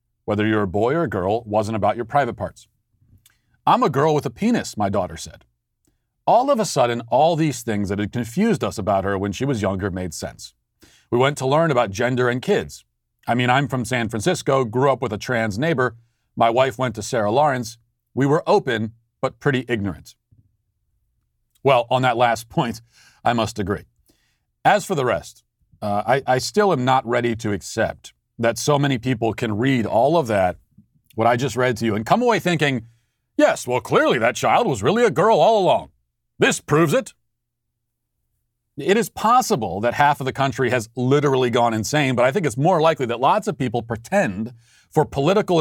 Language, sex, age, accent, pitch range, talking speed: English, male, 40-59, American, 115-140 Hz, 200 wpm